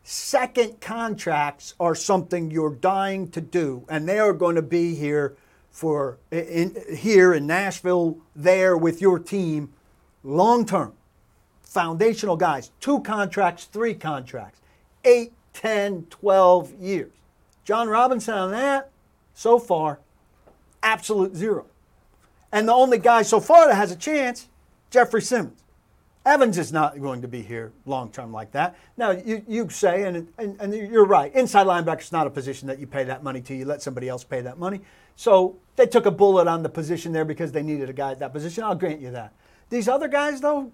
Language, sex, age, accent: English, male, 50-69, American